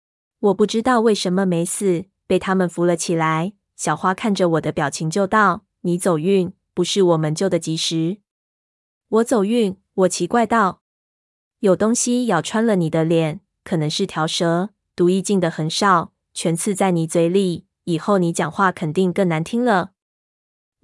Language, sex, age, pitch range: Chinese, female, 20-39, 170-205 Hz